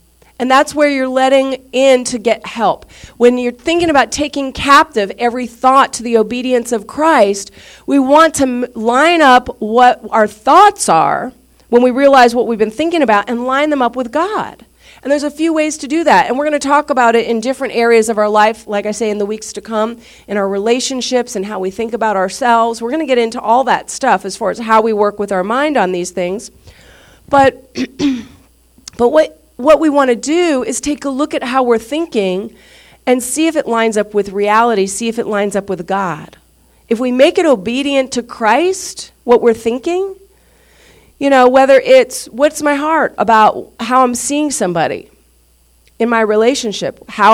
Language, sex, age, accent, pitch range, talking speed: English, female, 40-59, American, 225-290 Hz, 205 wpm